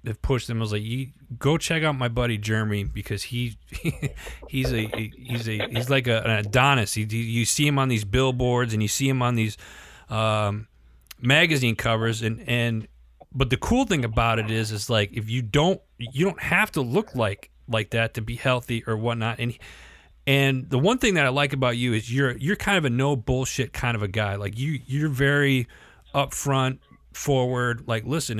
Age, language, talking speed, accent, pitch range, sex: 30-49, English, 205 wpm, American, 110-135 Hz, male